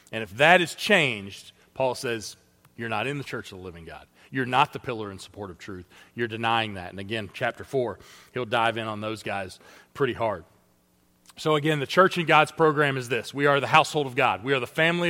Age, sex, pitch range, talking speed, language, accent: 40-59, male, 130-170 Hz, 230 wpm, English, American